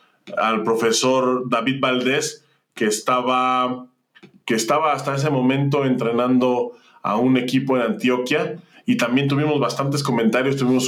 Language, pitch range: Spanish, 120-150 Hz